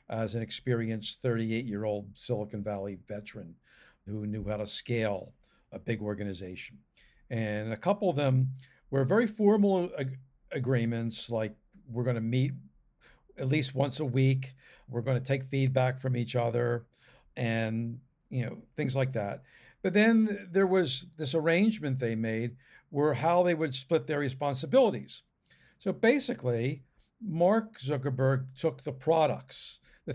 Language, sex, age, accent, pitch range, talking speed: English, male, 60-79, American, 125-165 Hz, 145 wpm